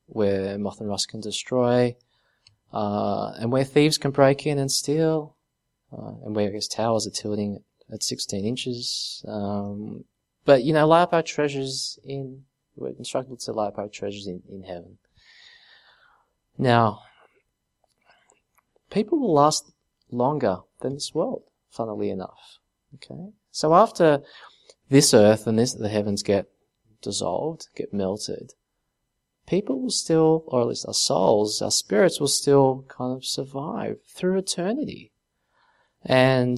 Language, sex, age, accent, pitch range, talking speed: English, male, 20-39, Australian, 105-140 Hz, 140 wpm